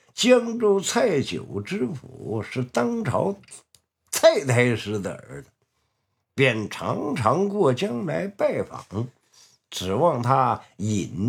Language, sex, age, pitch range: Chinese, male, 60-79, 125-215 Hz